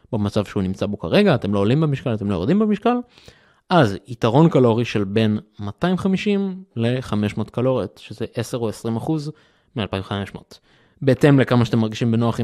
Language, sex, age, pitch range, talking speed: Hebrew, male, 20-39, 105-130 Hz, 160 wpm